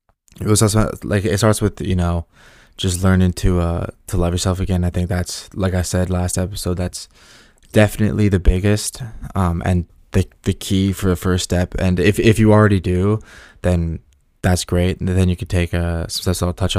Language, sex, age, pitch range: English, male, 20-39, 90-105 Hz